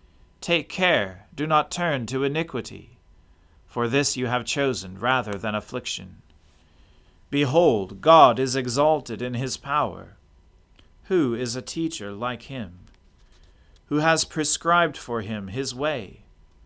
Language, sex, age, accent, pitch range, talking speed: English, male, 40-59, American, 90-140 Hz, 125 wpm